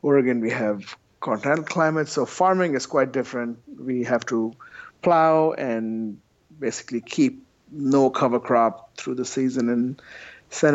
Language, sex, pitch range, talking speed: English, male, 115-155 Hz, 140 wpm